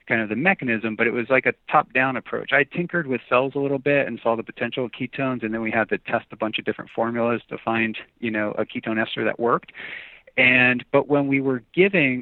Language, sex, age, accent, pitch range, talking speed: English, male, 40-59, American, 115-130 Hz, 245 wpm